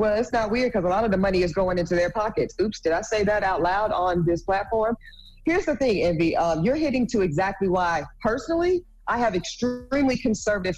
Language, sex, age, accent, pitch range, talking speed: English, female, 40-59, American, 185-235 Hz, 225 wpm